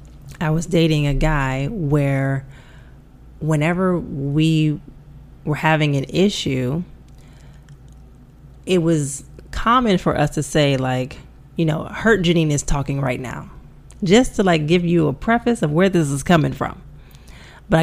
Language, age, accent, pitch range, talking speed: English, 30-49, American, 140-175 Hz, 140 wpm